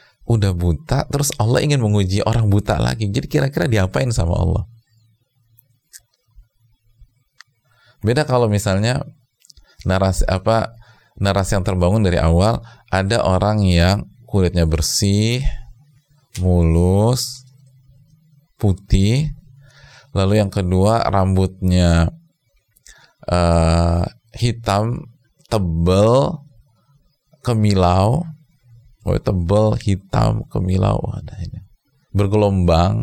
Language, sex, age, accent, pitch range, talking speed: Indonesian, male, 30-49, native, 95-125 Hz, 85 wpm